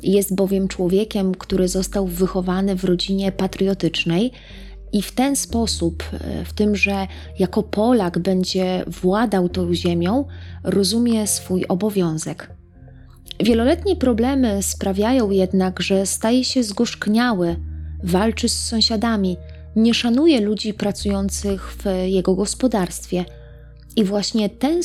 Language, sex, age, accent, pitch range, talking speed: Polish, female, 20-39, native, 170-225 Hz, 110 wpm